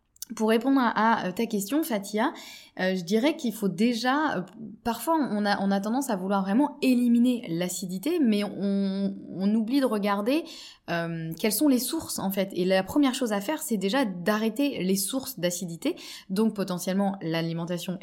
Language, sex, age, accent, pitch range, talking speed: French, female, 20-39, French, 180-235 Hz, 170 wpm